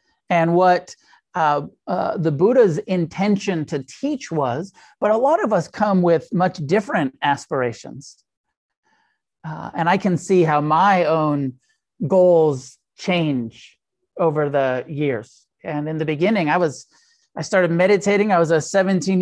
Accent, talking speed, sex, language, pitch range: American, 140 wpm, male, English, 155-200 Hz